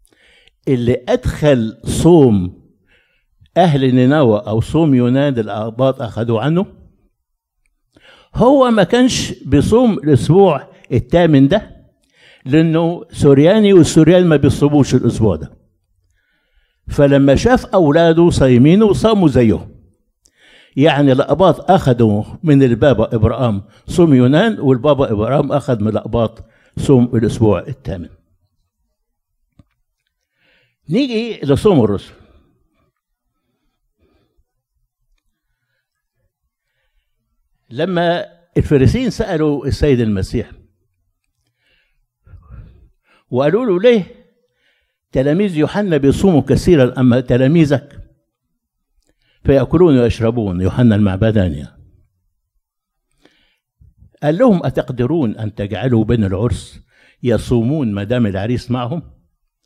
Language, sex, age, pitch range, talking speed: Arabic, male, 60-79, 105-150 Hz, 80 wpm